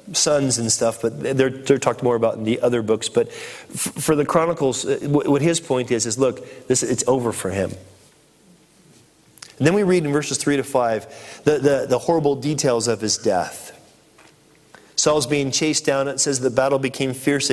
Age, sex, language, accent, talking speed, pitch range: 40-59, male, English, American, 190 wpm, 125-160 Hz